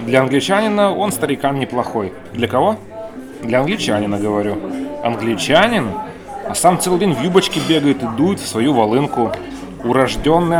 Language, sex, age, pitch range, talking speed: Russian, male, 30-49, 130-180 Hz, 135 wpm